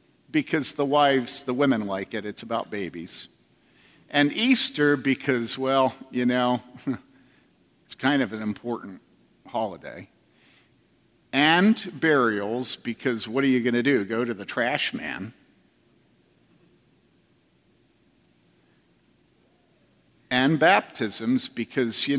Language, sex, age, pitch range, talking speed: English, male, 50-69, 120-145 Hz, 110 wpm